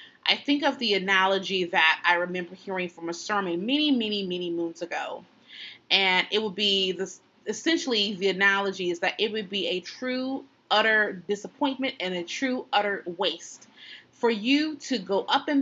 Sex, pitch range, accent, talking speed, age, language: female, 190-260 Hz, American, 170 wpm, 30-49, English